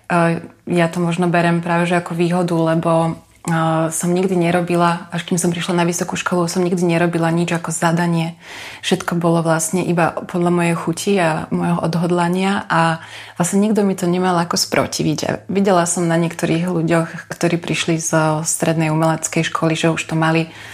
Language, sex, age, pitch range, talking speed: Slovak, female, 20-39, 160-175 Hz, 175 wpm